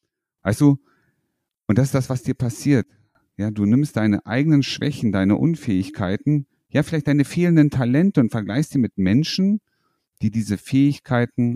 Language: German